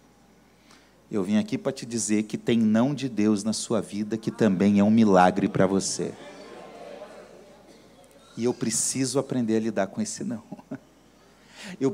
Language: Portuguese